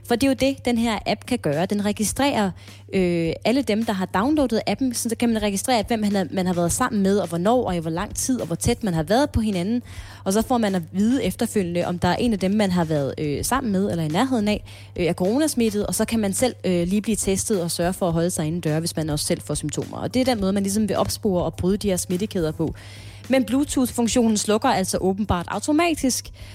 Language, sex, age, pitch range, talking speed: Danish, female, 20-39, 175-240 Hz, 260 wpm